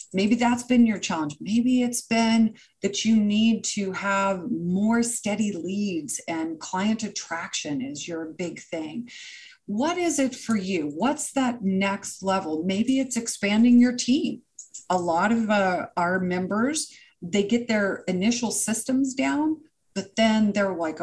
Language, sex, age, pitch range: English, female, 40-59, 195-255 Hz